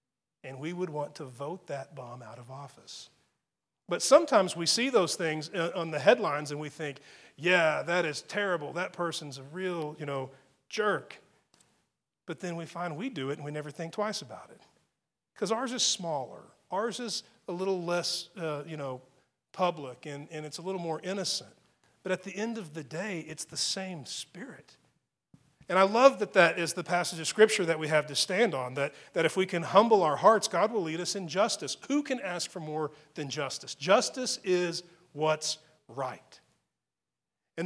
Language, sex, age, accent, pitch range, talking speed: English, male, 40-59, American, 145-185 Hz, 195 wpm